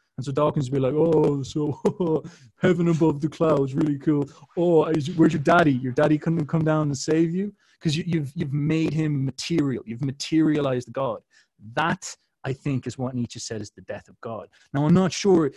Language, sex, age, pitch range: English, male, 20-39, 125-160 Hz